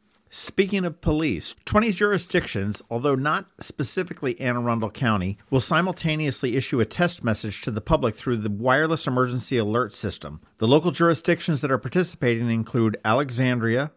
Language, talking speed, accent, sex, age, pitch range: English, 145 wpm, American, male, 50-69, 115-150 Hz